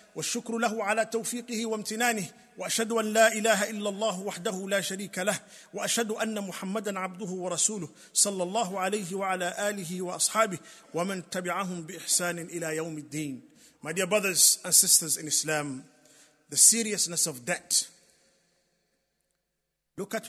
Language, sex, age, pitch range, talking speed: English, male, 50-69, 165-210 Hz, 135 wpm